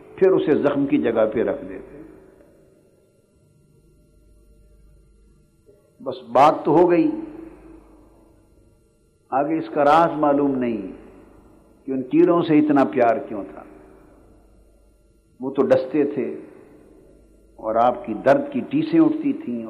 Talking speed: 120 wpm